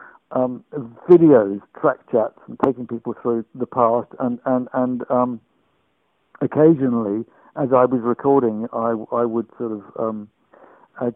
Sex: male